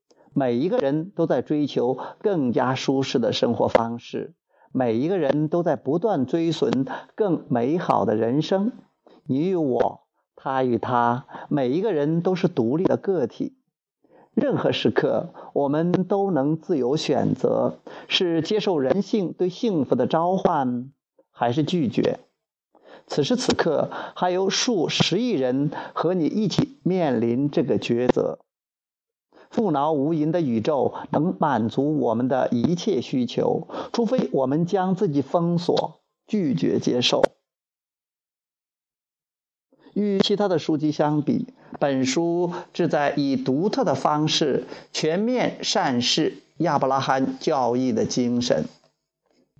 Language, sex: Chinese, male